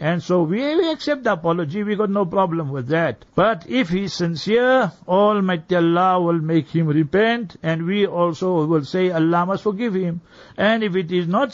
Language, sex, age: English, male, 60-79